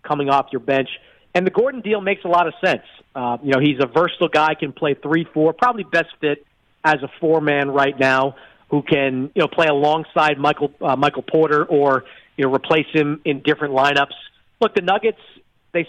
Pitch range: 145-180 Hz